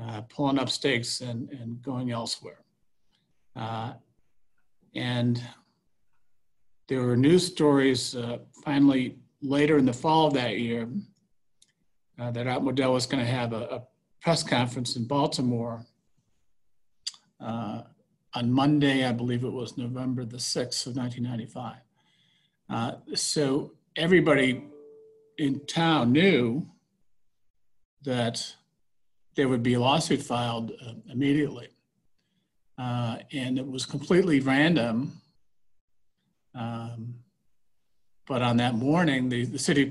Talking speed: 115 wpm